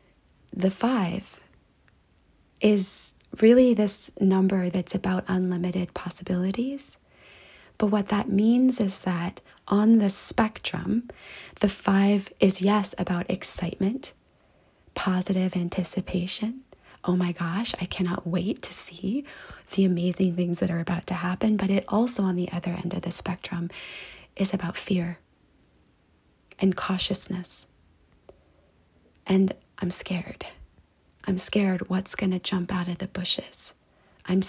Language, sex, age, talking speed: English, female, 20-39, 125 wpm